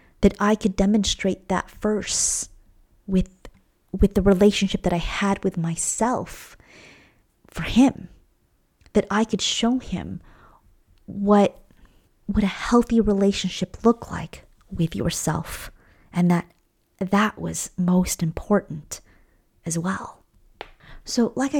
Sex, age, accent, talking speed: female, 30-49, American, 115 wpm